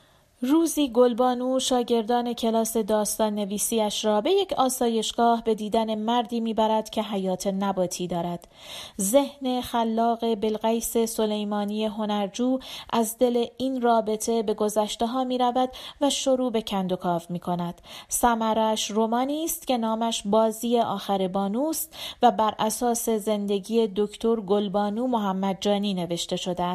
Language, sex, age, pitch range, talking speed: Persian, female, 30-49, 210-255 Hz, 120 wpm